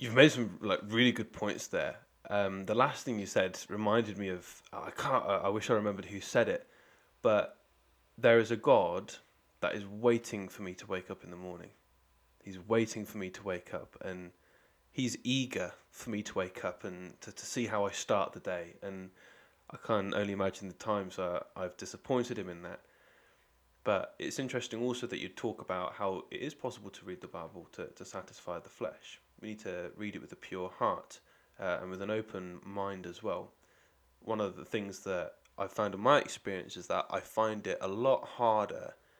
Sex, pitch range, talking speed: male, 90-110 Hz, 210 wpm